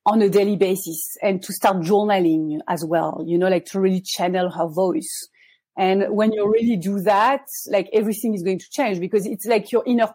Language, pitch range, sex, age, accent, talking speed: English, 190-230 Hz, female, 40-59, French, 205 wpm